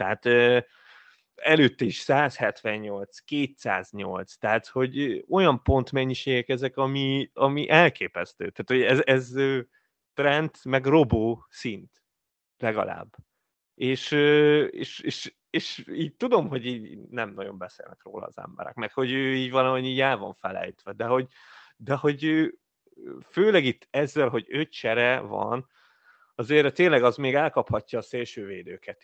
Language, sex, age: Hungarian, male, 30-49